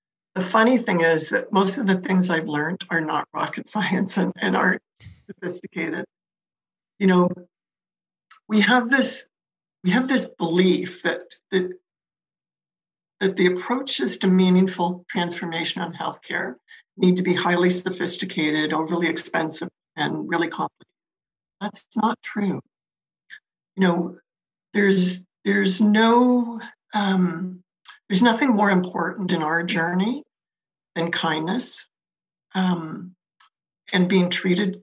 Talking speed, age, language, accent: 120 wpm, 60-79, English, American